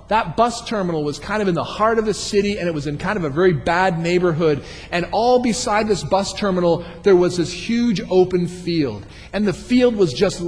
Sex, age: male, 40-59